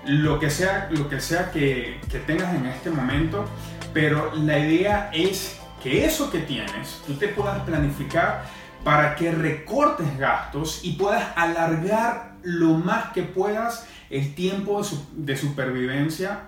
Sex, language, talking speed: male, Spanish, 140 wpm